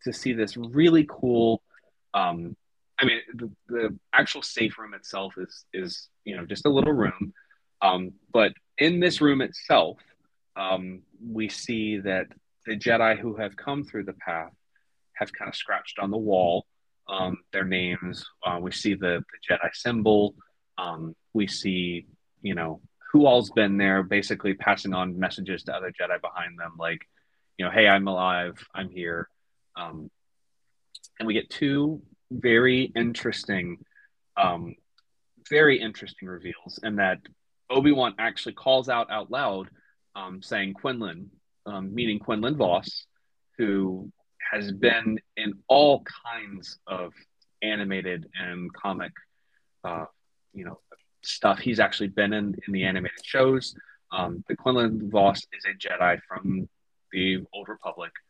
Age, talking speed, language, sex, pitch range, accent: 30-49, 145 wpm, English, male, 95-115 Hz, American